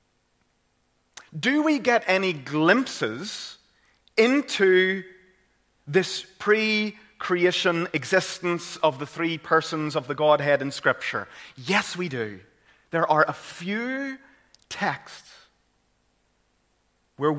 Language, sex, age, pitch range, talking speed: English, male, 30-49, 120-185 Hz, 95 wpm